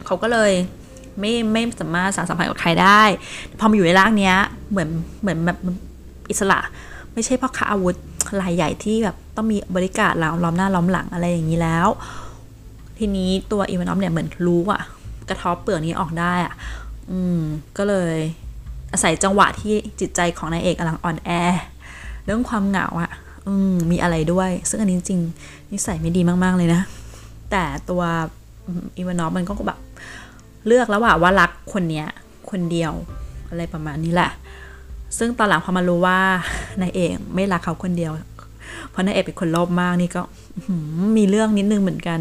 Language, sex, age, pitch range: Thai, female, 20-39, 165-195 Hz